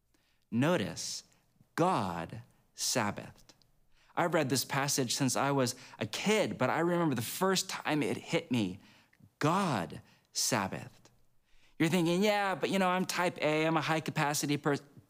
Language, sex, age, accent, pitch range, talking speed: English, male, 40-59, American, 120-155 Hz, 145 wpm